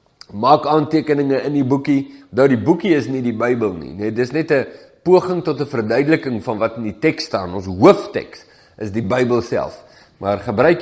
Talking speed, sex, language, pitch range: 200 wpm, male, English, 115-155 Hz